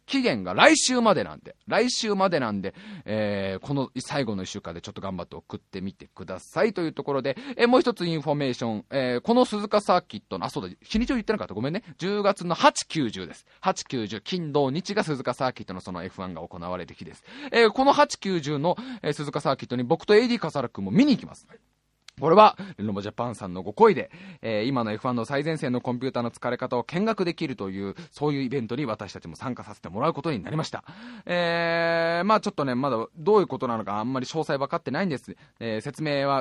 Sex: male